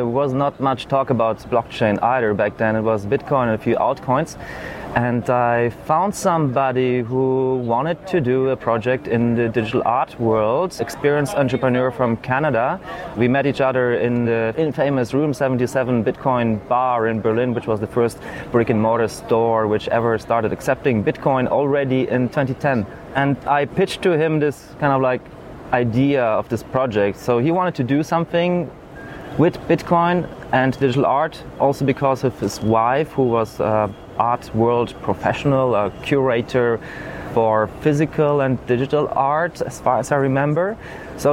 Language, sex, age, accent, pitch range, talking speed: English, male, 30-49, German, 120-140 Hz, 165 wpm